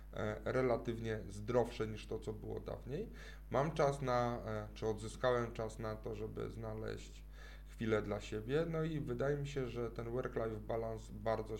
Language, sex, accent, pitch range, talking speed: Polish, male, native, 105-125 Hz, 155 wpm